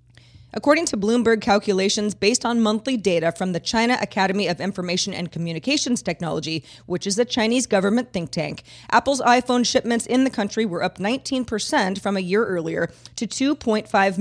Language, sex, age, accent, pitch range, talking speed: English, female, 30-49, American, 175-225 Hz, 170 wpm